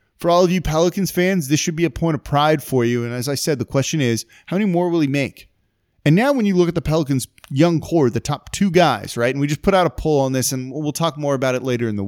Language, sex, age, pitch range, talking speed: English, male, 20-39, 110-155 Hz, 305 wpm